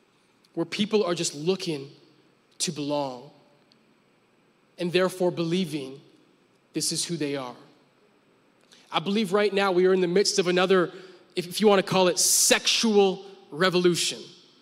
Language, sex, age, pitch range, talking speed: English, male, 20-39, 155-195 Hz, 140 wpm